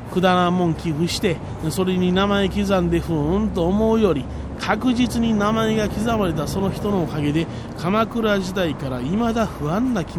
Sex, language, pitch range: male, Japanese, 160-210 Hz